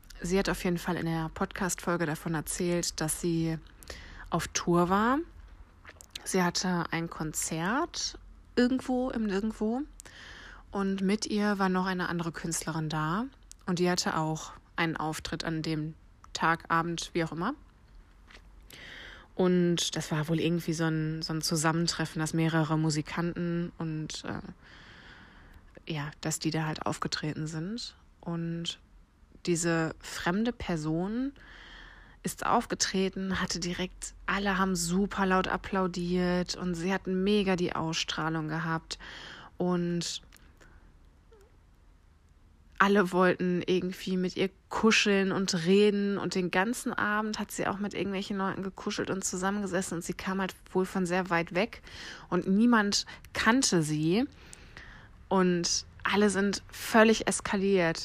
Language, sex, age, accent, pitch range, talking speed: German, female, 20-39, German, 160-195 Hz, 130 wpm